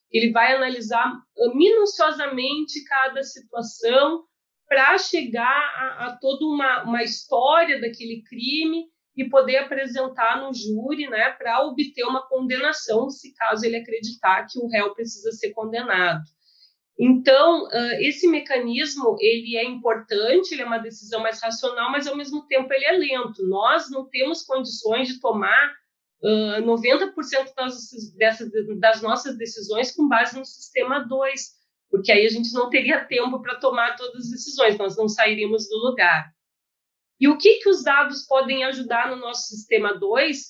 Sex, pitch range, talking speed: female, 225-275 Hz, 155 wpm